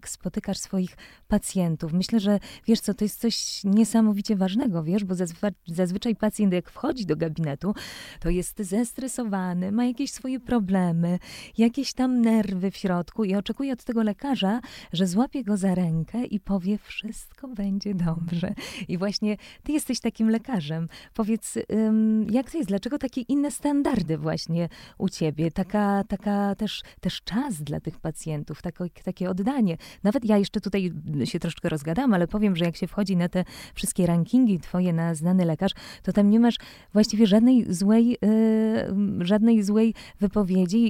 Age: 20-39